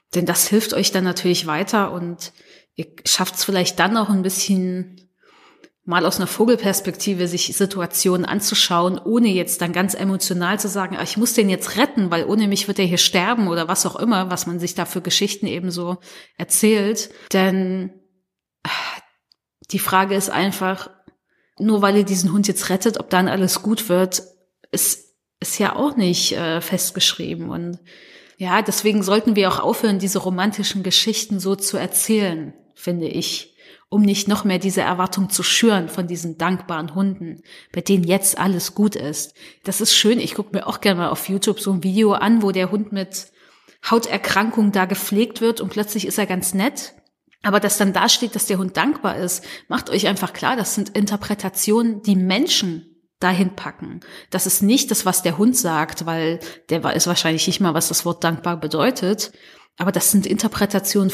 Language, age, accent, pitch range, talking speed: German, 30-49, German, 180-205 Hz, 180 wpm